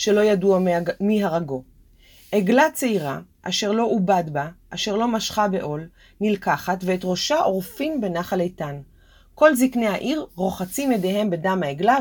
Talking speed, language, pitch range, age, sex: 135 wpm, Hebrew, 175-245 Hz, 30-49, female